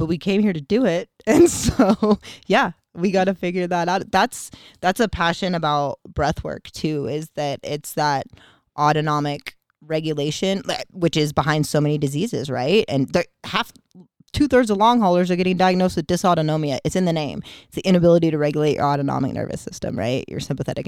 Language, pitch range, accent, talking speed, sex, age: English, 145-180 Hz, American, 185 wpm, female, 20-39